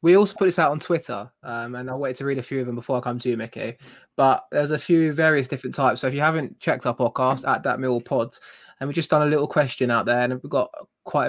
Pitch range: 130-160 Hz